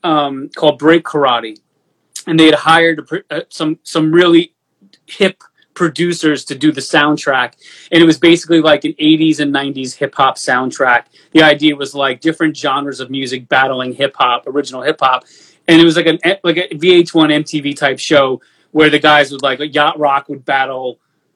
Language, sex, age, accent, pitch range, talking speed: English, male, 30-49, American, 140-165 Hz, 185 wpm